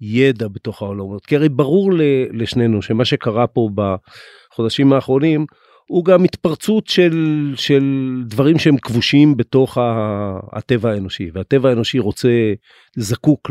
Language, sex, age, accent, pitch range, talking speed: Hebrew, male, 50-69, native, 115-145 Hz, 120 wpm